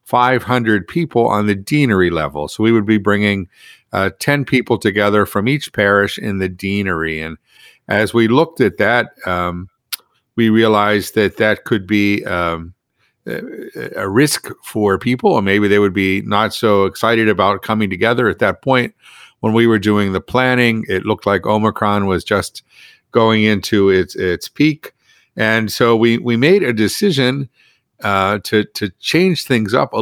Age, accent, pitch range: 50-69, American, 100-125 Hz